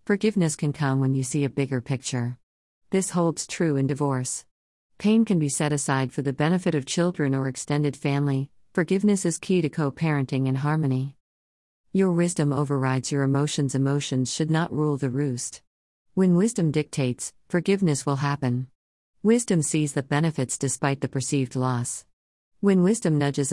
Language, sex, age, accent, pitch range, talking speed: English, female, 50-69, American, 135-165 Hz, 160 wpm